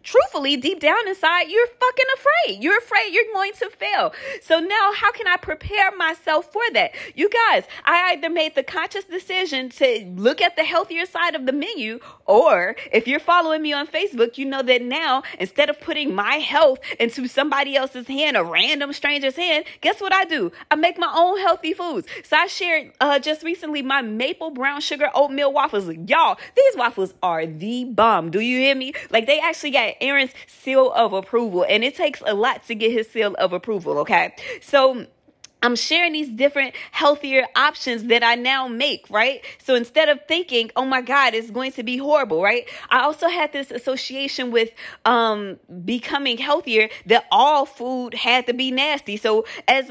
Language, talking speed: English, 190 wpm